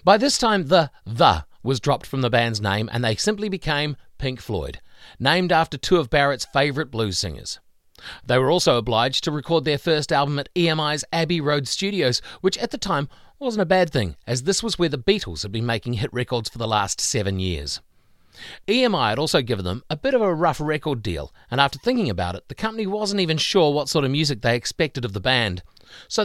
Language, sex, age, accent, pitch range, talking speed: English, male, 40-59, Australian, 115-165 Hz, 215 wpm